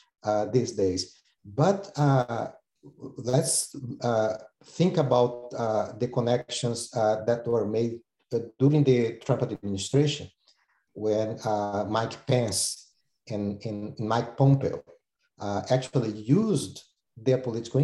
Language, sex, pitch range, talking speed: English, male, 115-140 Hz, 110 wpm